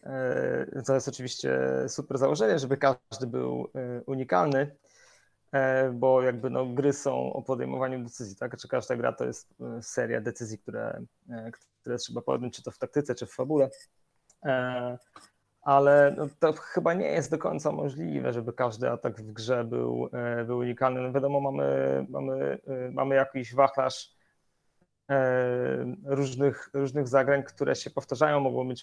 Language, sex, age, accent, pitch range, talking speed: Polish, male, 20-39, native, 120-140 Hz, 140 wpm